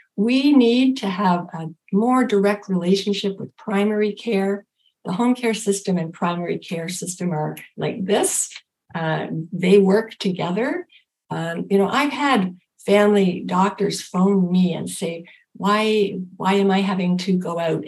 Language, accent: English, American